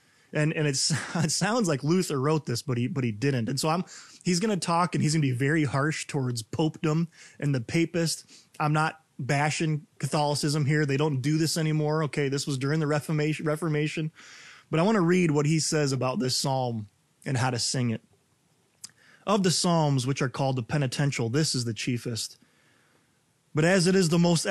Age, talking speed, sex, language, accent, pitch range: 20-39, 205 wpm, male, English, American, 130-170 Hz